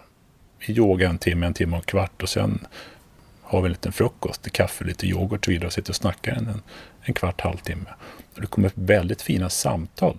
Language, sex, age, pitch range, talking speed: Swedish, male, 30-49, 90-105 Hz, 225 wpm